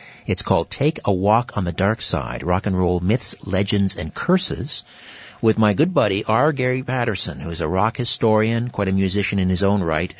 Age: 50-69